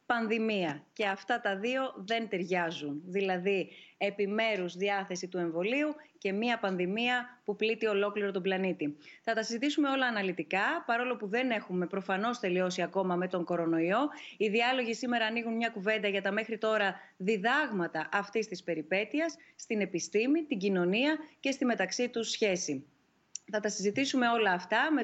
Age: 30-49